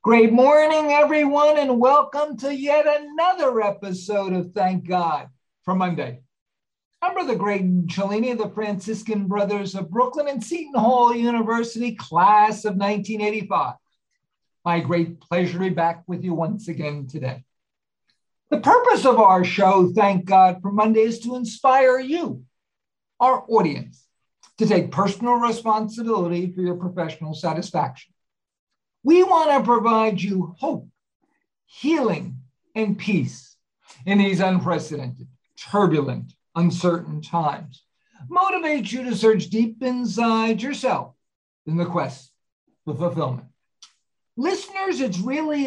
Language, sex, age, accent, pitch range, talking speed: English, male, 50-69, American, 175-245 Hz, 125 wpm